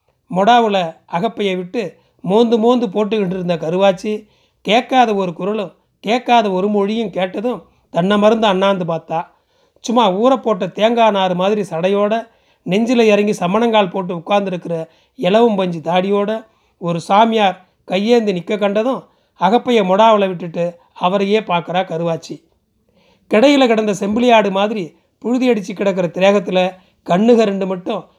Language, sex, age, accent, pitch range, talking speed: Tamil, male, 40-59, native, 180-225 Hz, 120 wpm